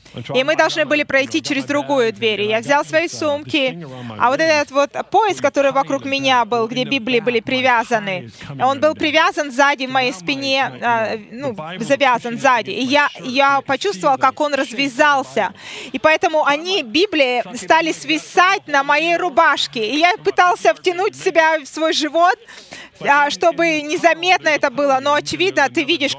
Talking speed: 155 wpm